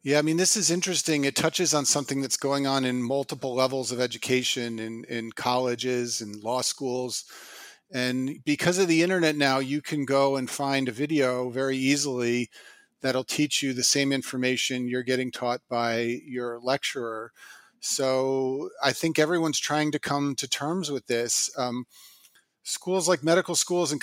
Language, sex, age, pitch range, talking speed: English, male, 40-59, 125-150 Hz, 170 wpm